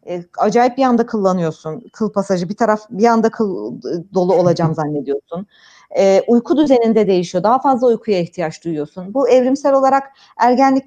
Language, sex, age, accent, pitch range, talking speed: Turkish, female, 40-59, native, 190-250 Hz, 150 wpm